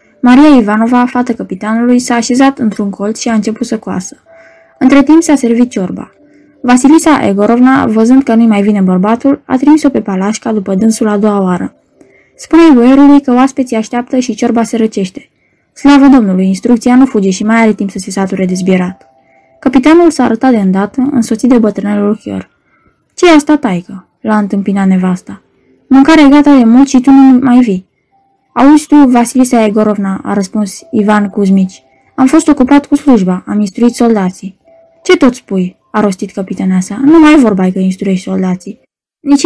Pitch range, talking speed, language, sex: 205-270 Hz, 170 wpm, Romanian, female